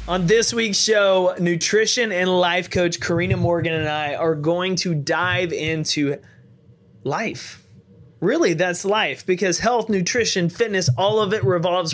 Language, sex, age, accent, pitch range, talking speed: English, male, 20-39, American, 145-185 Hz, 145 wpm